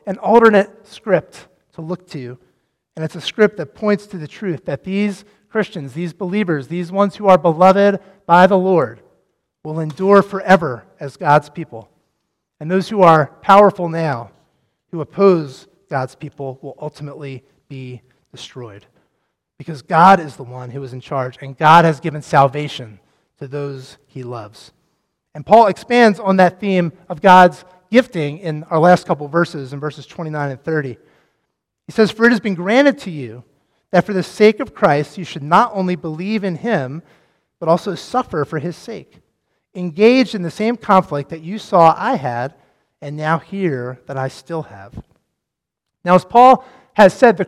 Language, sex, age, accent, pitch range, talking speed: English, male, 30-49, American, 145-200 Hz, 175 wpm